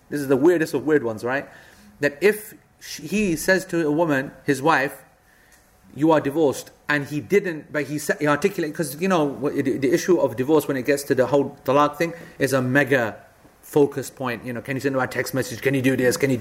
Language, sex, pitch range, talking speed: English, male, 140-180 Hz, 220 wpm